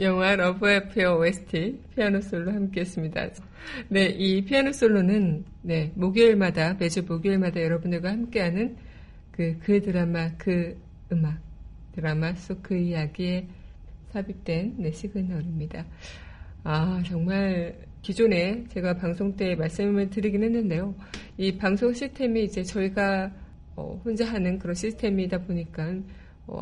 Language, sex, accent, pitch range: Korean, female, native, 170-210 Hz